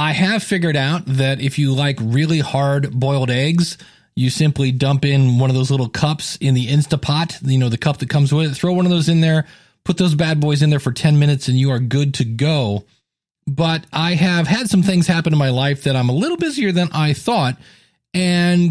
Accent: American